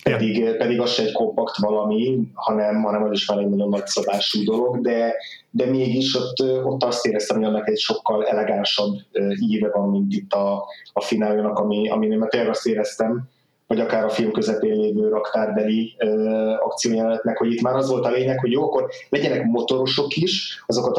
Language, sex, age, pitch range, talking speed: Hungarian, male, 20-39, 110-130 Hz, 175 wpm